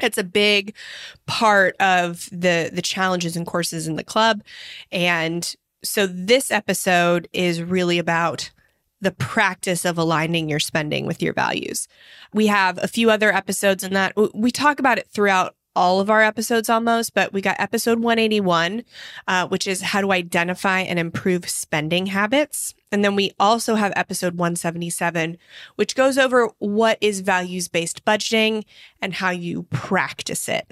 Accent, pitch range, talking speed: American, 175-215 Hz, 160 wpm